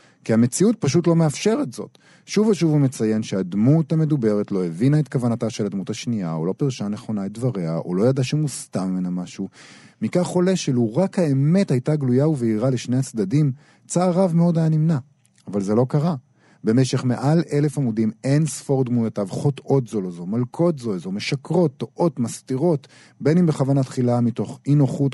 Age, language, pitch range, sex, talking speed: 40-59, Hebrew, 110-155 Hz, male, 180 wpm